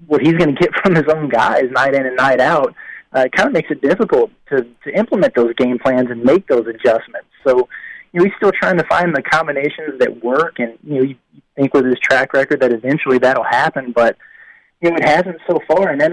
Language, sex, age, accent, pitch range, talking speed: English, male, 30-49, American, 130-160 Hz, 240 wpm